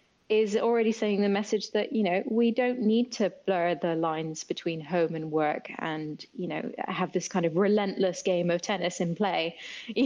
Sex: female